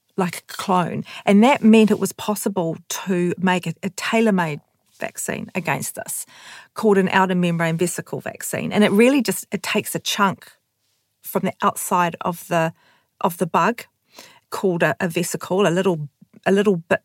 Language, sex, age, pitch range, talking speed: English, female, 40-59, 175-205 Hz, 170 wpm